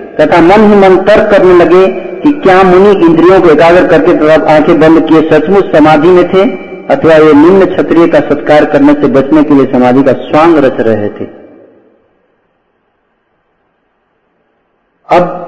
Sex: male